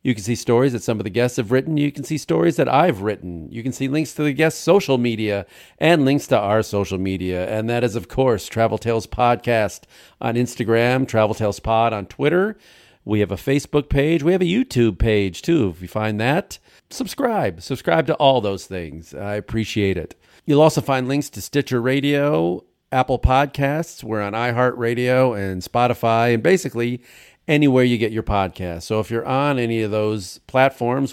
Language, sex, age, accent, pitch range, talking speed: English, male, 40-59, American, 105-130 Hz, 195 wpm